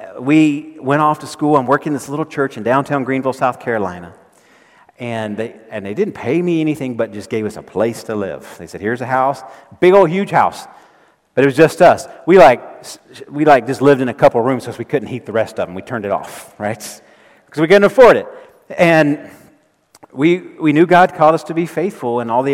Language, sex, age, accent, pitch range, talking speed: English, male, 40-59, American, 115-150 Hz, 230 wpm